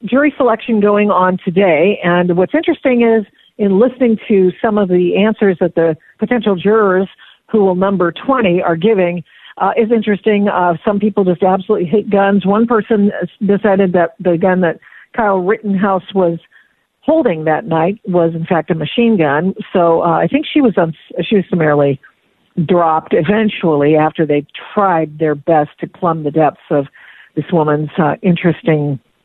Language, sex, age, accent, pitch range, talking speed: English, female, 50-69, American, 170-215 Hz, 165 wpm